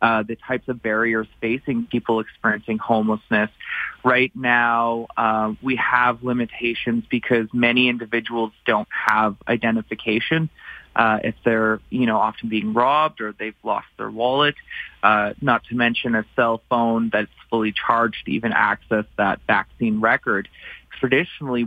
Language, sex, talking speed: English, male, 140 wpm